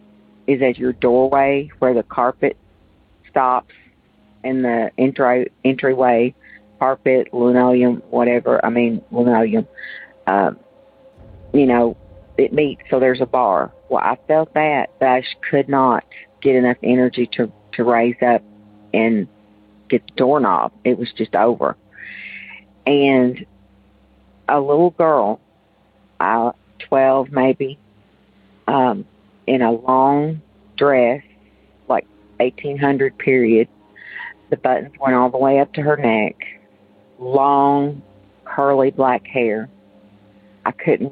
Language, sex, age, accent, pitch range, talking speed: English, female, 50-69, American, 105-135 Hz, 120 wpm